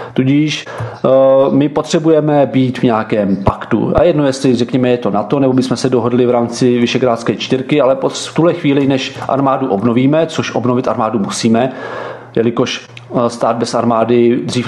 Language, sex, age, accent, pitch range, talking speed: Czech, male, 40-59, native, 120-135 Hz, 160 wpm